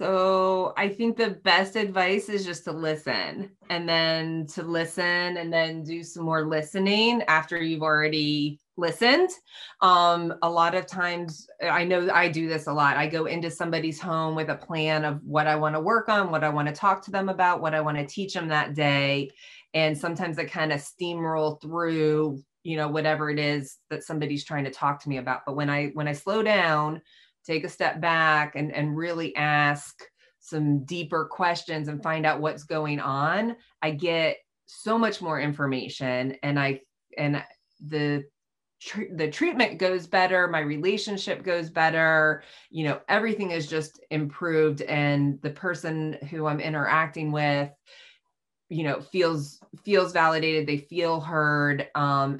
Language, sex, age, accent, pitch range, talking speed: English, female, 20-39, American, 150-175 Hz, 175 wpm